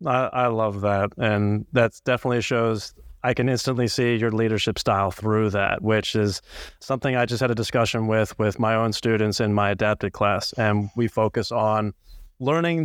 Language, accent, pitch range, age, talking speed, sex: English, American, 105-120 Hz, 30-49, 180 wpm, male